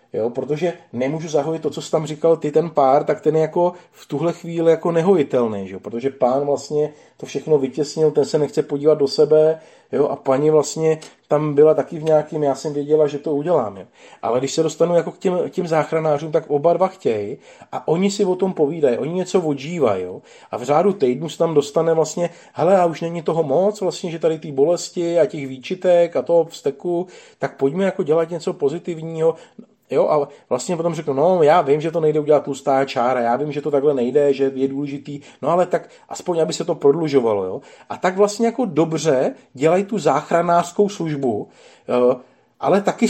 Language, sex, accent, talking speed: Czech, male, native, 205 wpm